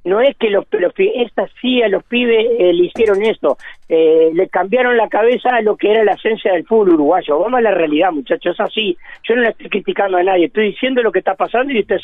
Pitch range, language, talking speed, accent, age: 170-235 Hz, Spanish, 250 wpm, Argentinian, 50-69